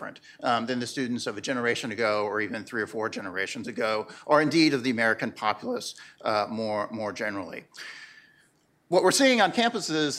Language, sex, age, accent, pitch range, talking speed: English, male, 50-69, American, 120-160 Hz, 175 wpm